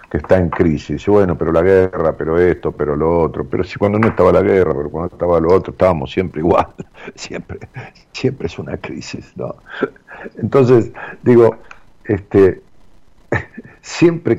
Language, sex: Spanish, male